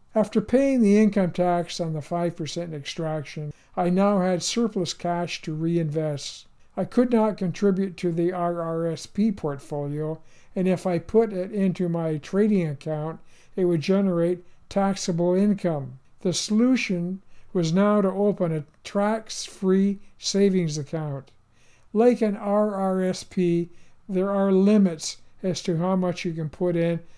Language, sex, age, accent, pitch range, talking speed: English, male, 60-79, American, 165-195 Hz, 135 wpm